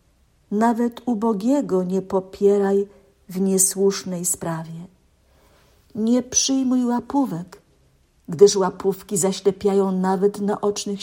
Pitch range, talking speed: 175-205 Hz, 80 wpm